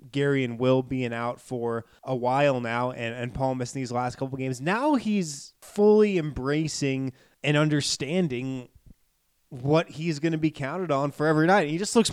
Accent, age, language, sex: American, 20-39, English, male